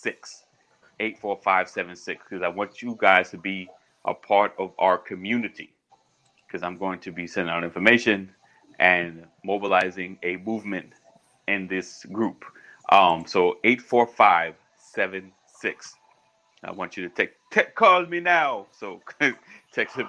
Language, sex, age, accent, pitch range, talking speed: English, male, 30-49, American, 95-120 Hz, 130 wpm